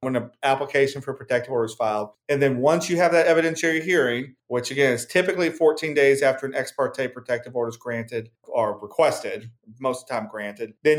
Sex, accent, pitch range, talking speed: male, American, 125-155 Hz, 200 wpm